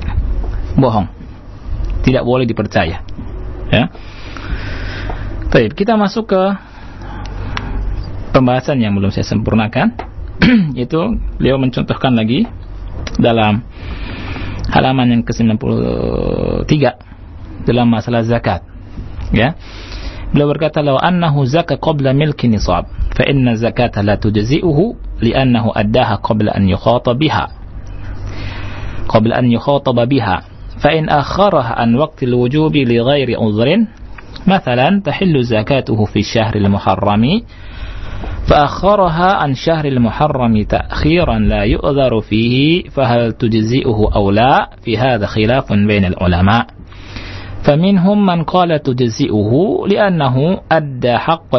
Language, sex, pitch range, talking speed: Indonesian, male, 95-135 Hz, 100 wpm